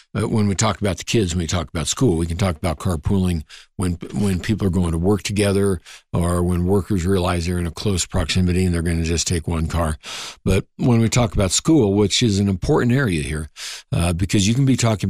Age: 60-79